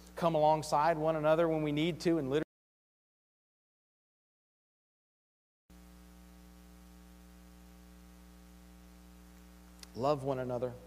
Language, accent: English, American